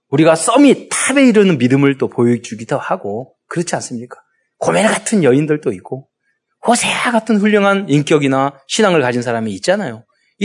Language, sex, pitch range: Korean, male, 125-210 Hz